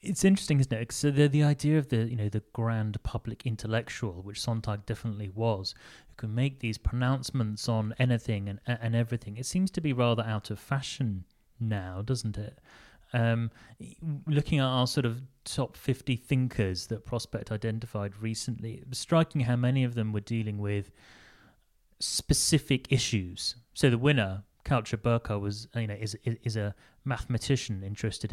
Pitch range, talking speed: 105-130 Hz, 170 wpm